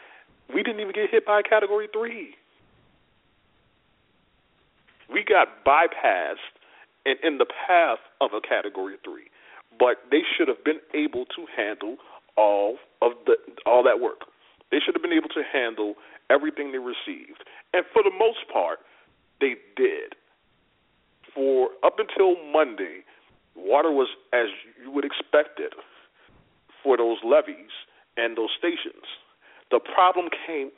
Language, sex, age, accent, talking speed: English, male, 40-59, American, 140 wpm